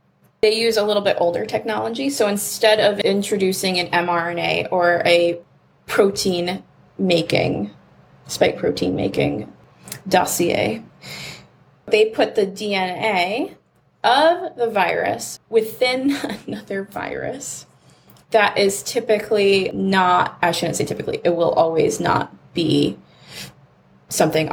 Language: English